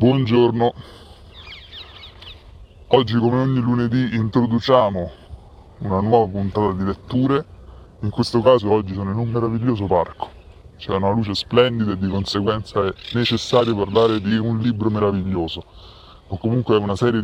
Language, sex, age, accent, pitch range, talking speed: Italian, female, 20-39, native, 90-115 Hz, 135 wpm